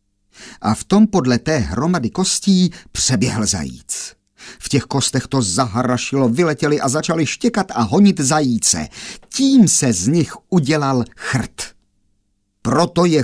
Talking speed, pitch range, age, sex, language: 130 wpm, 110-180 Hz, 50-69, male, Czech